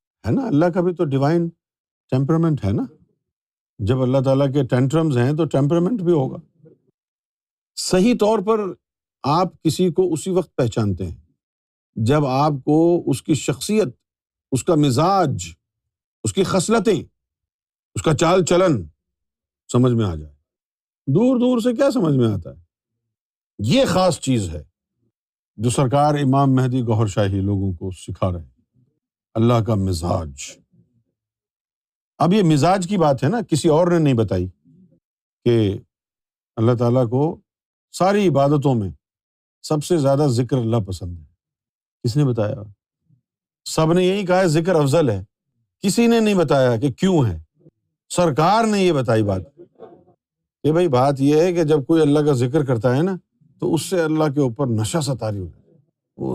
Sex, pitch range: male, 105-170 Hz